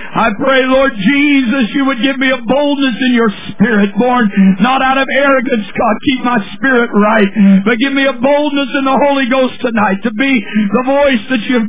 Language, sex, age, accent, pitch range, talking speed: English, male, 50-69, American, 195-265 Hz, 205 wpm